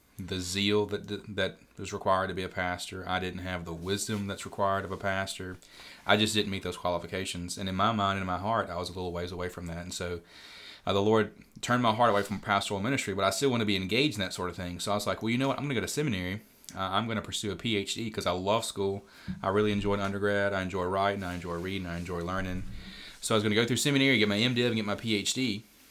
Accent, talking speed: American, 270 wpm